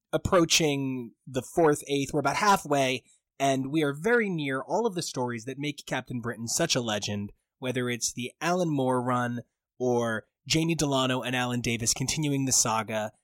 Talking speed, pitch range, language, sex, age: 170 wpm, 125-170 Hz, English, male, 20-39